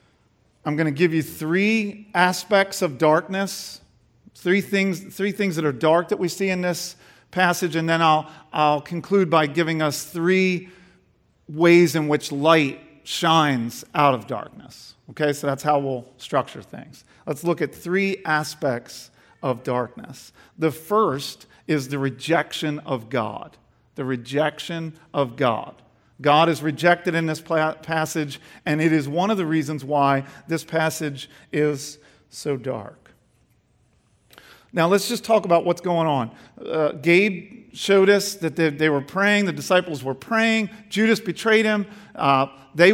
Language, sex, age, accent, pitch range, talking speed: English, male, 40-59, American, 155-200 Hz, 150 wpm